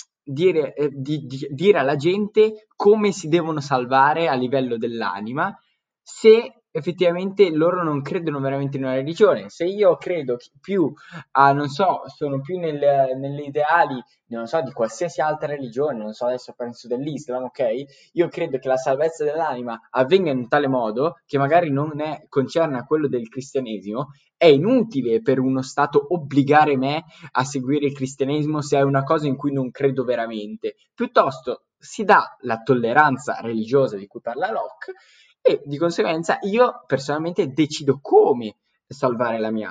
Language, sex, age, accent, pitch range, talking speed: Italian, male, 10-29, native, 130-180 Hz, 155 wpm